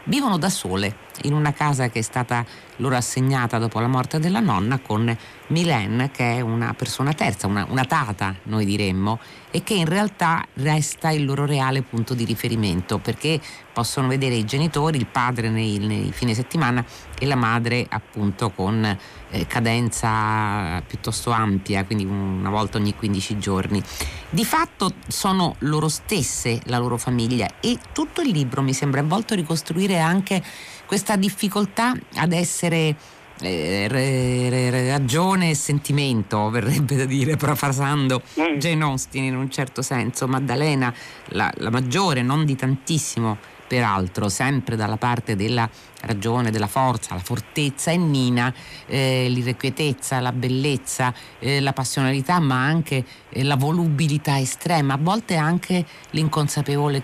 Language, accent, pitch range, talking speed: Italian, native, 115-150 Hz, 145 wpm